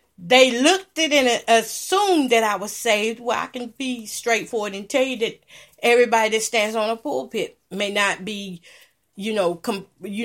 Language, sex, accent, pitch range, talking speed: English, female, American, 190-250 Hz, 185 wpm